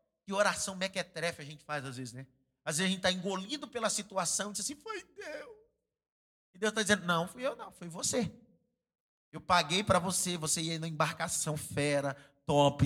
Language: Portuguese